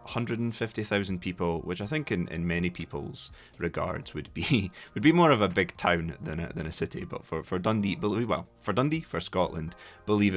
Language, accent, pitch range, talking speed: English, British, 80-105 Hz, 215 wpm